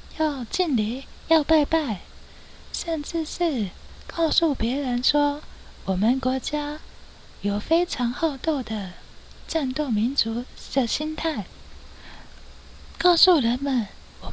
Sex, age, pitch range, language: female, 20-39, 225-310 Hz, Chinese